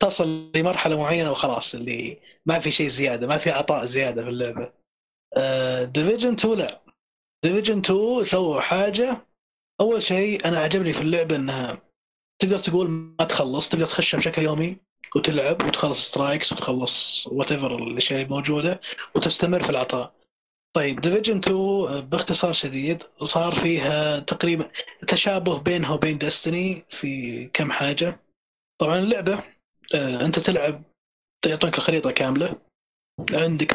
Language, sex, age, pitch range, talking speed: Arabic, male, 20-39, 140-180 Hz, 125 wpm